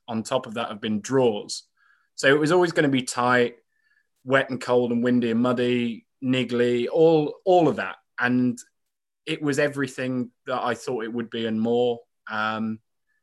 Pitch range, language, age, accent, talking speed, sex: 125-160 Hz, English, 20-39, British, 180 wpm, male